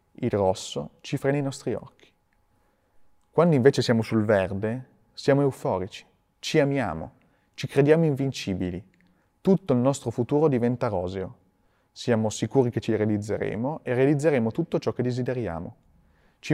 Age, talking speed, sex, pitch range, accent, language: 30-49, 135 wpm, male, 110-145 Hz, native, Italian